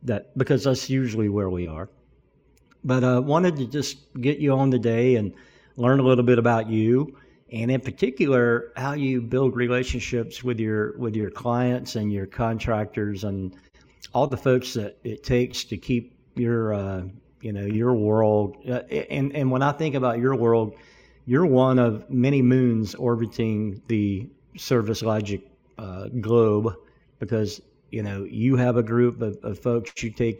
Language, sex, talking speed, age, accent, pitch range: English, male, 170 wpm, 50-69, American, 105-130 Hz